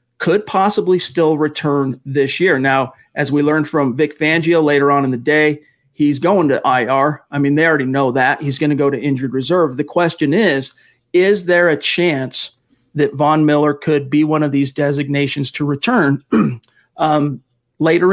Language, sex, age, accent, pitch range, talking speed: English, male, 40-59, American, 145-170 Hz, 180 wpm